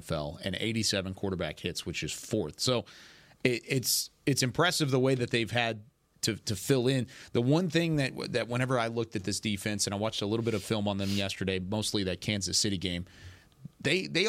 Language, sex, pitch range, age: English, male, 95-120 Hz, 30-49